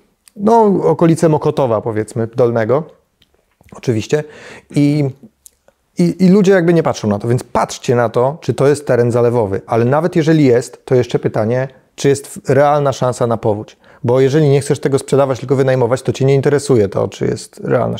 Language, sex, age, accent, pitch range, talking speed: Polish, male, 30-49, native, 120-150 Hz, 175 wpm